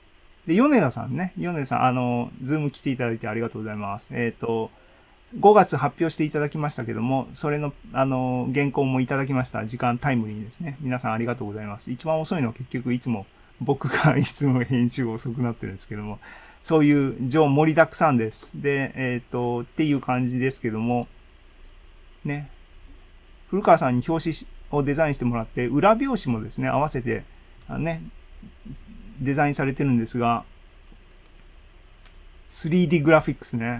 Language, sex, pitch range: Japanese, male, 110-145 Hz